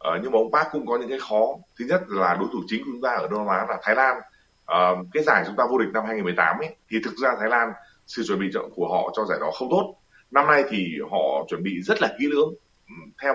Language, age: Vietnamese, 20-39